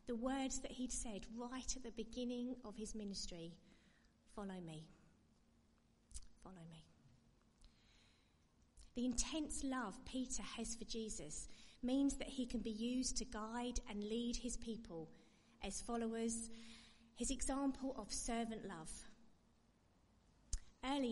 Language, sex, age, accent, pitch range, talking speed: English, female, 30-49, British, 200-245 Hz, 120 wpm